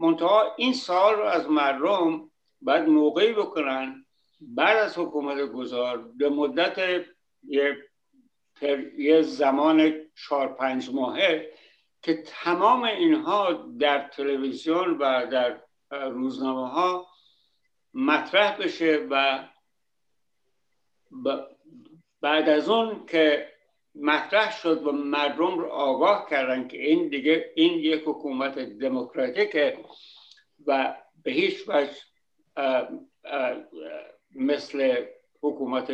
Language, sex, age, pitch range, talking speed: Persian, male, 60-79, 135-205 Hz, 95 wpm